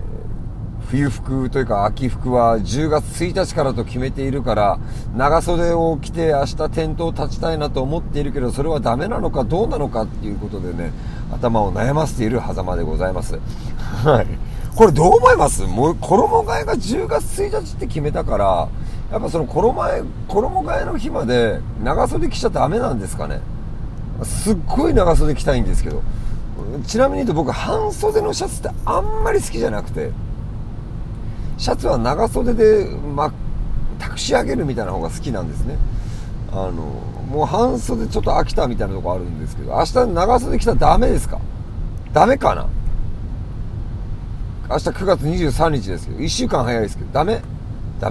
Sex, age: male, 40-59